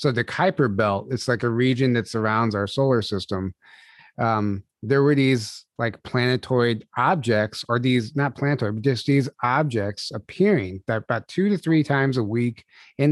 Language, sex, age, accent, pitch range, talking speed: English, male, 30-49, American, 110-135 Hz, 175 wpm